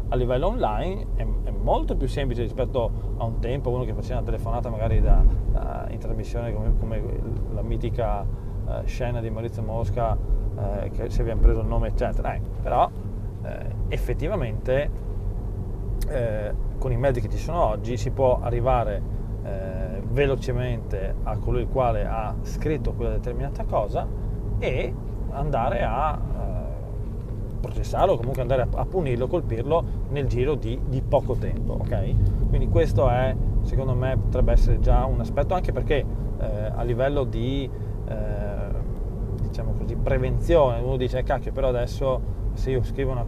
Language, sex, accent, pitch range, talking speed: Italian, male, native, 105-125 Hz, 155 wpm